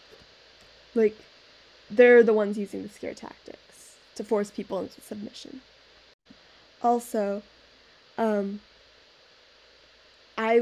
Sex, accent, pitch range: female, American, 210-260 Hz